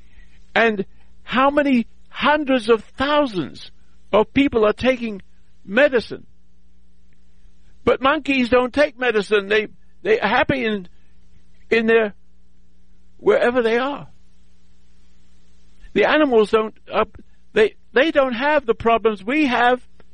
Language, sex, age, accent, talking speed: English, male, 60-79, American, 115 wpm